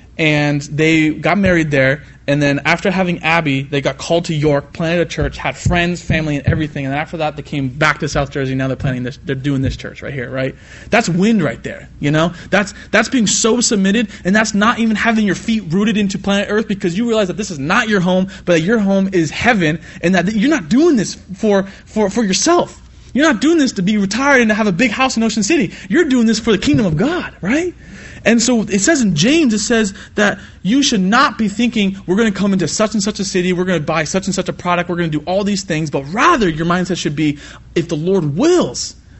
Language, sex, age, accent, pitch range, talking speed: English, male, 20-39, American, 155-220 Hz, 245 wpm